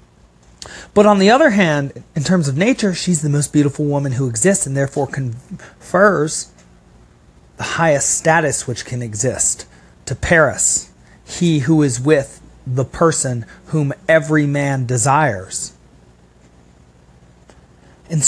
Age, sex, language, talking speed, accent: 40-59, male, English, 125 wpm, American